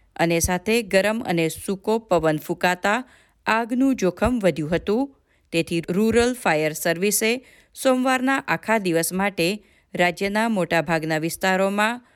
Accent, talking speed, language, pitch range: native, 85 wpm, Gujarati, 165-220 Hz